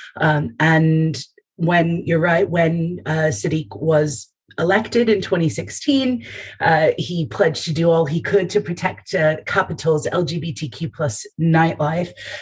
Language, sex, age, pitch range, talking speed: English, female, 30-49, 150-180 Hz, 130 wpm